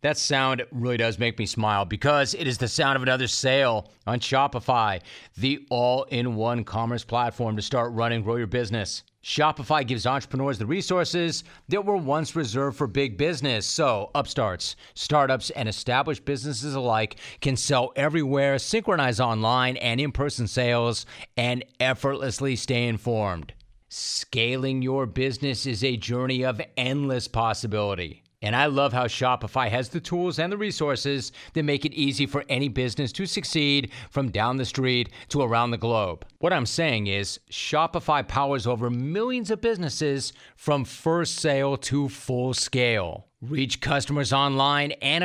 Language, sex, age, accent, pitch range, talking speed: English, male, 40-59, American, 120-145 Hz, 155 wpm